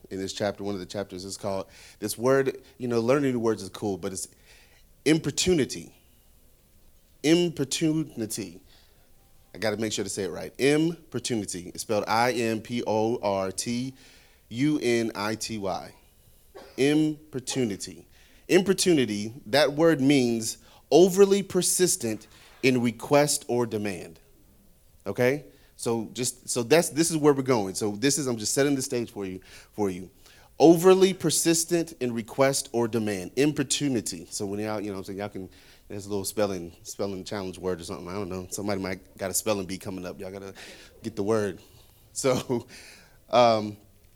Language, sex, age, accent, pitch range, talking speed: English, male, 30-49, American, 95-135 Hz, 165 wpm